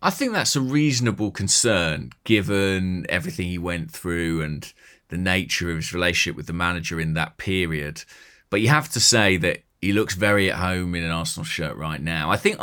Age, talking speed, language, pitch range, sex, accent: 30-49, 200 wpm, English, 85-105 Hz, male, British